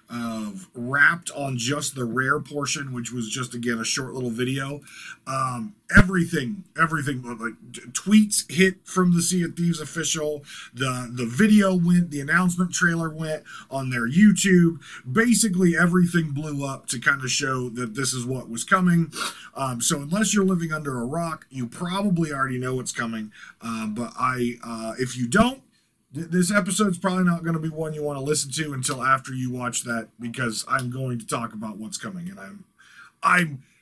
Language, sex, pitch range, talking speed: English, male, 125-185 Hz, 185 wpm